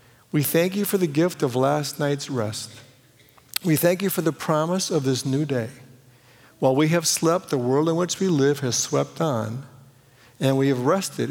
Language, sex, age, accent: English, male, 60-79, American